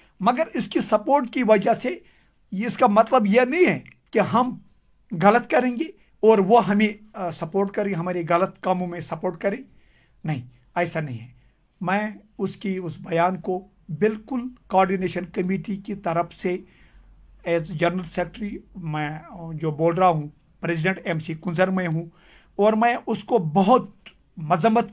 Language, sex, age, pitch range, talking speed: Urdu, male, 50-69, 165-215 Hz, 155 wpm